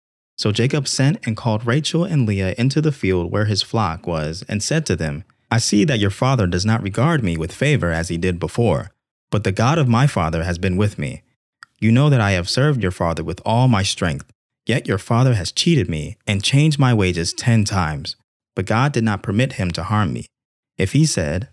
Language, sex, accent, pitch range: English, male, American, 90-125 Hz